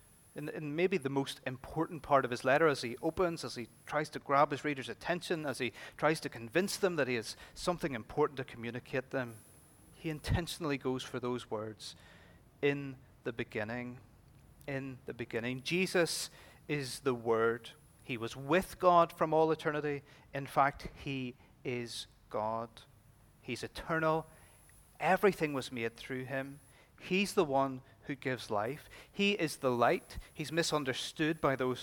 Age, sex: 30-49, male